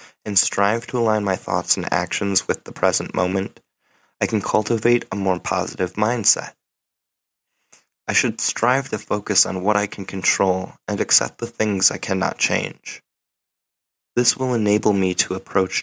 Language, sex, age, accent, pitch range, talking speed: English, male, 20-39, American, 95-115 Hz, 160 wpm